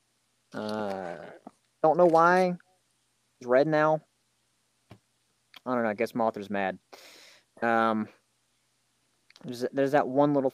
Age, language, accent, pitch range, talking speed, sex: 30-49, English, American, 110-140 Hz, 115 wpm, male